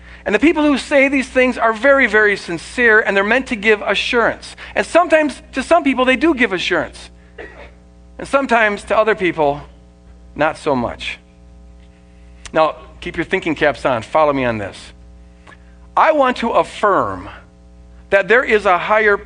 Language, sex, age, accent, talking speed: English, male, 50-69, American, 165 wpm